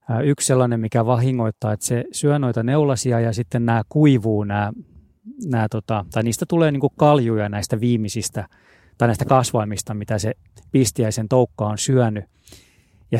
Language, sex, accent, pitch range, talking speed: Finnish, male, native, 110-130 Hz, 145 wpm